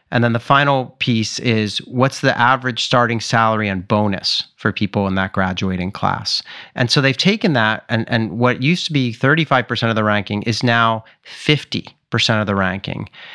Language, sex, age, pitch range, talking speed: English, male, 30-49, 110-140 Hz, 180 wpm